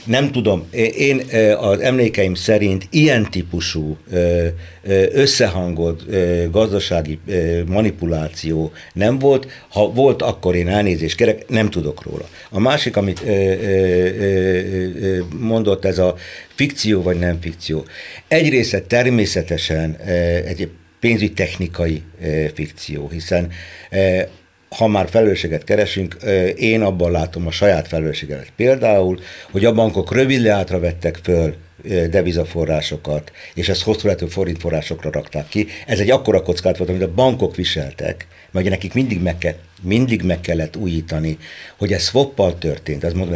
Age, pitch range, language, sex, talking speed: 60-79, 85-105 Hz, Hungarian, male, 125 wpm